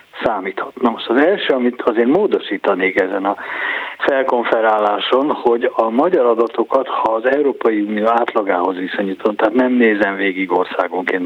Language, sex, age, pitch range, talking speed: Hungarian, male, 60-79, 105-150 Hz, 130 wpm